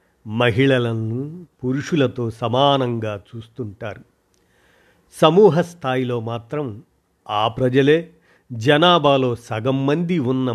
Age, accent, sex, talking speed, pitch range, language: 50-69, native, male, 70 wpm, 110-145 Hz, Telugu